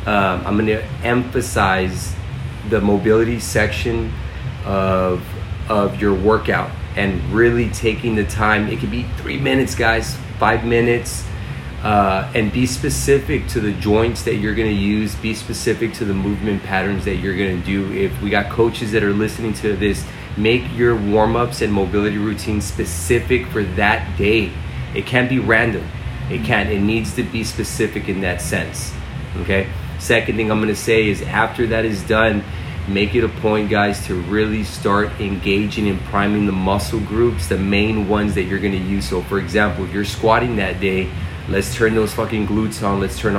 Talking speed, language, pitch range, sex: 180 wpm, English, 95-110 Hz, male